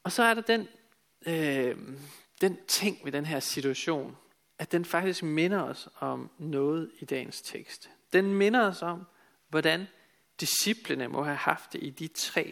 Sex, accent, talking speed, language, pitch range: male, native, 165 wpm, Danish, 145-185 Hz